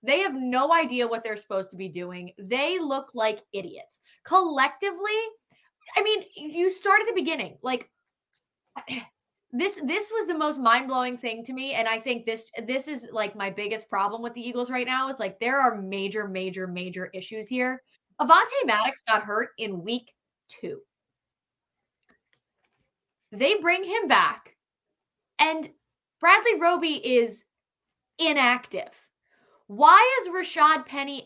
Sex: female